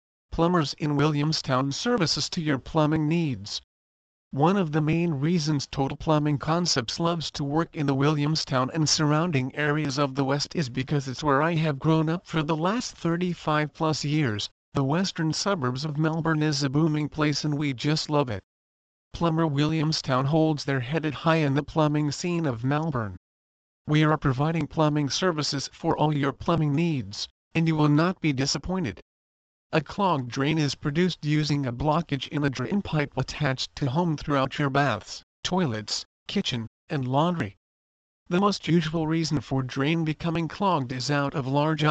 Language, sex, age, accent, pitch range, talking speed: English, male, 50-69, American, 135-165 Hz, 170 wpm